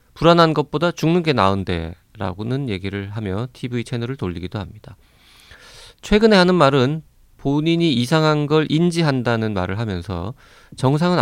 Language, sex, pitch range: Korean, male, 105-150 Hz